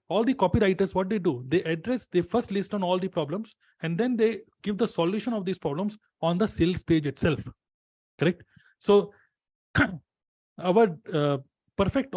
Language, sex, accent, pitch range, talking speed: Hindi, male, native, 150-190 Hz, 170 wpm